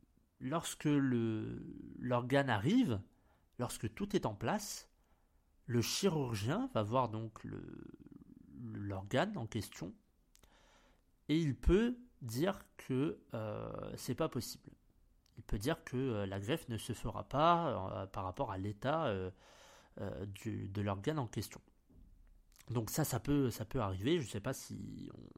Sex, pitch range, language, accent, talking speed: male, 100-130 Hz, French, French, 150 wpm